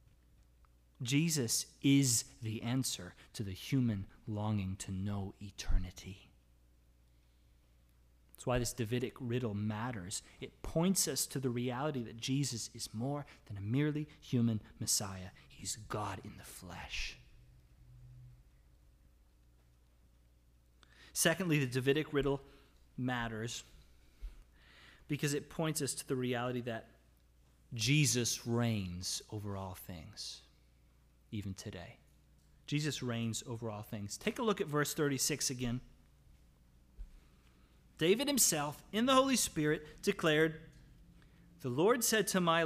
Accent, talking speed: American, 115 wpm